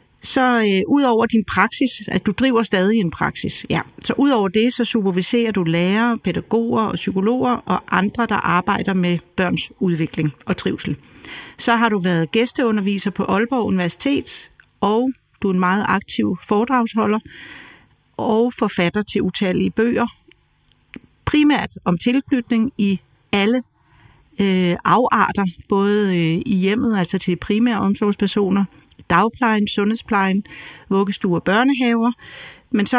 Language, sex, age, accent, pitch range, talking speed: Danish, female, 40-59, native, 185-230 Hz, 140 wpm